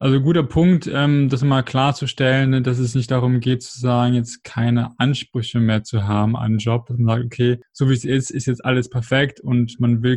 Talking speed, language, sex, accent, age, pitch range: 225 wpm, German, male, German, 20-39, 120-135 Hz